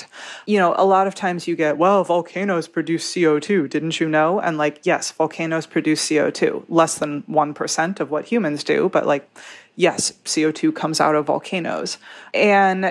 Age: 30-49